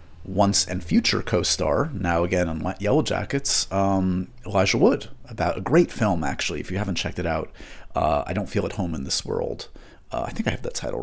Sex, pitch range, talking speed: male, 90-115 Hz, 210 wpm